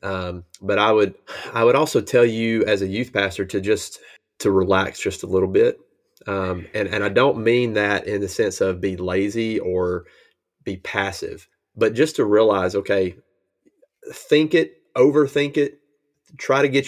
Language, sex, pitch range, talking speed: English, male, 95-120 Hz, 175 wpm